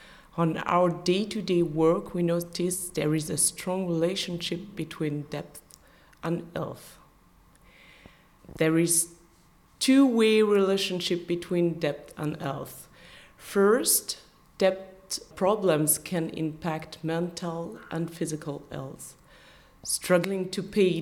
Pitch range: 155-190 Hz